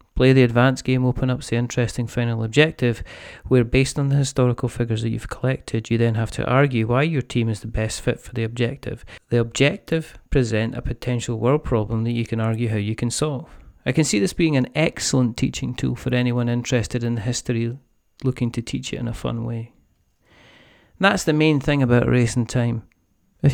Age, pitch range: 40-59, 115-130 Hz